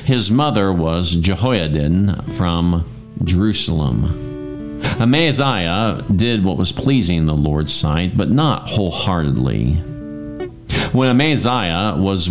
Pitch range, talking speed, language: 85-115 Hz, 95 wpm, English